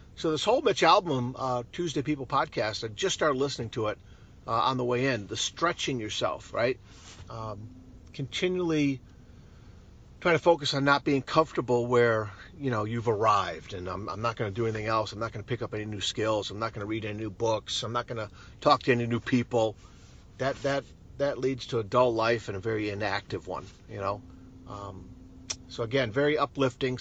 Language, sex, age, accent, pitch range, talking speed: English, male, 40-59, American, 100-125 Hz, 205 wpm